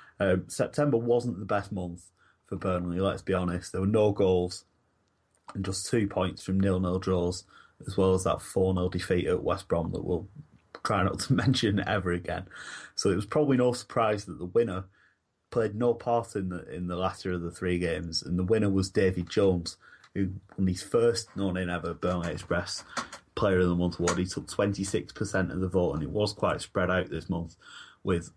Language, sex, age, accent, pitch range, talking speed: English, male, 30-49, British, 90-100 Hz, 200 wpm